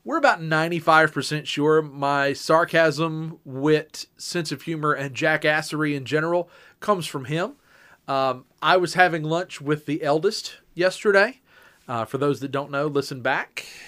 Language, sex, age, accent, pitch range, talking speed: English, male, 40-59, American, 135-165 Hz, 145 wpm